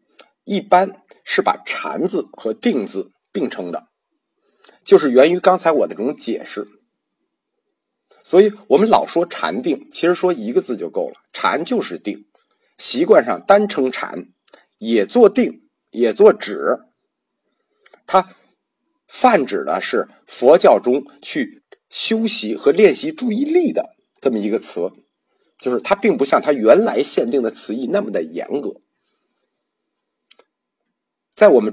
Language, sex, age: Chinese, male, 50-69